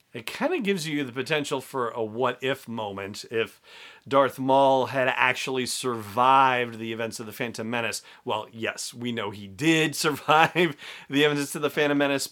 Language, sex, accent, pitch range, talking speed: English, male, American, 120-150 Hz, 175 wpm